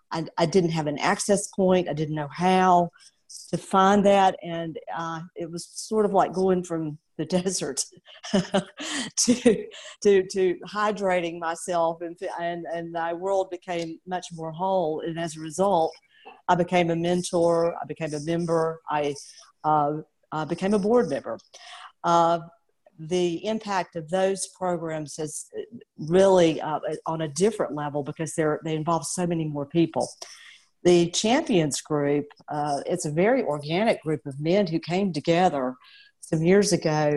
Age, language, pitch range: 50-69, English, 155-185 Hz